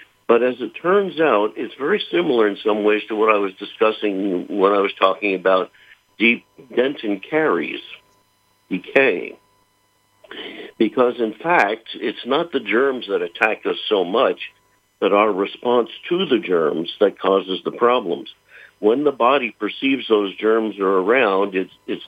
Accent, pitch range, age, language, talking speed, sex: American, 100-120 Hz, 60-79, English, 155 wpm, male